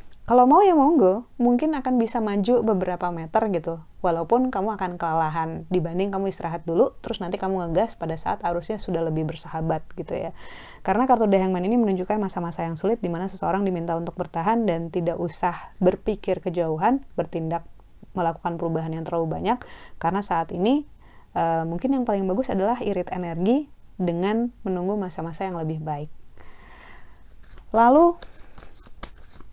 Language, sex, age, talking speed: Indonesian, female, 30-49, 150 wpm